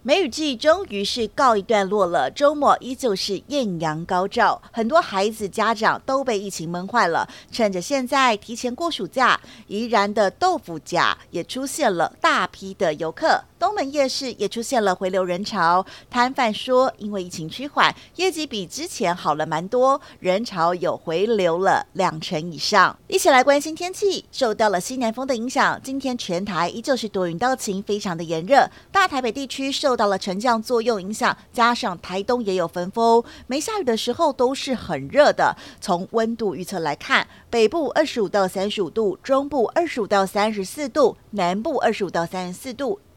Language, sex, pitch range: Chinese, female, 190-265 Hz